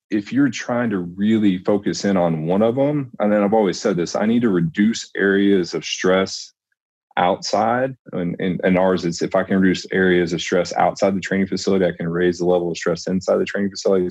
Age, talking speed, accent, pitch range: 30-49, 220 wpm, American, 85-100 Hz